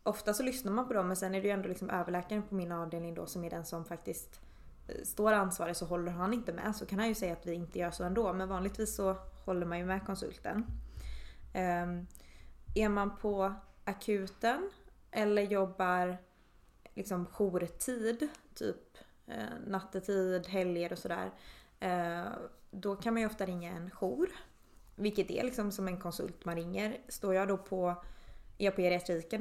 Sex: female